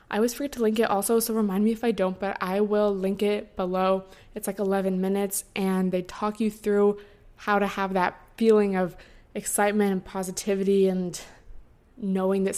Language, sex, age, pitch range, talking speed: English, female, 20-39, 185-210 Hz, 190 wpm